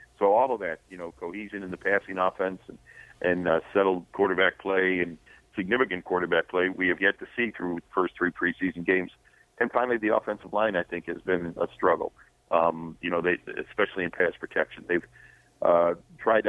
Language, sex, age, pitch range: English, male, 50-69, 90-100 Hz